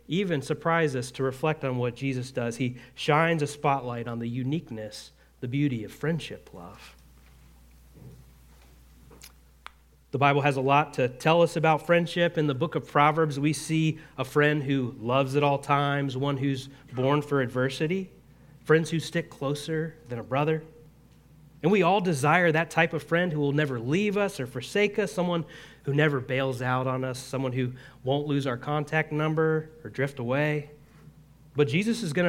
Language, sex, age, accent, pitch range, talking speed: English, male, 30-49, American, 130-160 Hz, 175 wpm